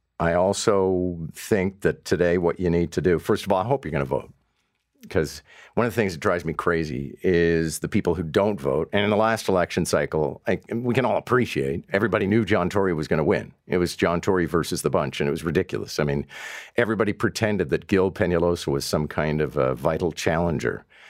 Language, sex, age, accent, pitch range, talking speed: English, male, 50-69, American, 85-105 Hz, 220 wpm